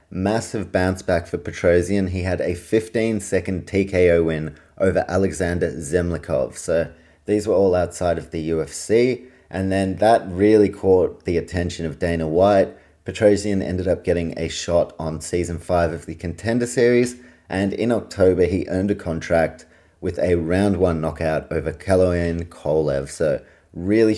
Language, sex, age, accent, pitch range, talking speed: English, male, 30-49, Australian, 85-100 Hz, 155 wpm